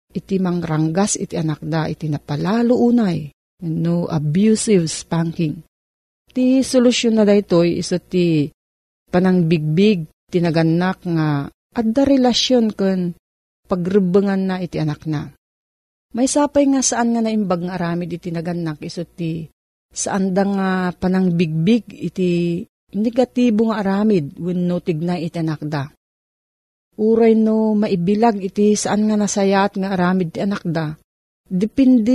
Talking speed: 120 wpm